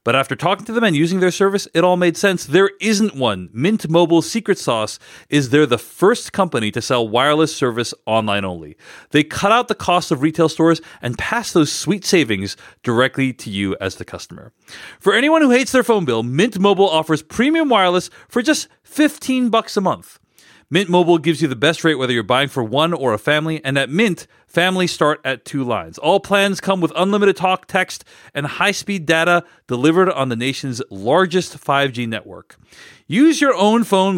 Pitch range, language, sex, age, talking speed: 130-190 Hz, English, male, 40-59, 195 wpm